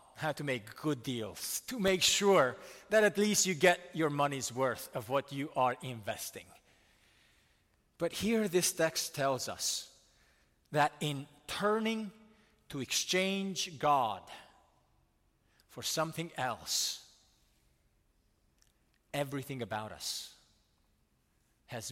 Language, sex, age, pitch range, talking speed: English, male, 40-59, 110-165 Hz, 110 wpm